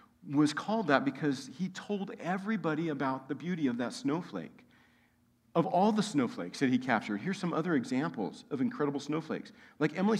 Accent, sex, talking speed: American, male, 170 wpm